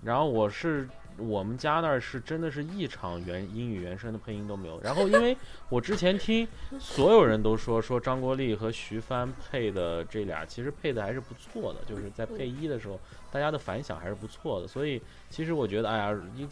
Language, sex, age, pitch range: Chinese, male, 20-39, 110-165 Hz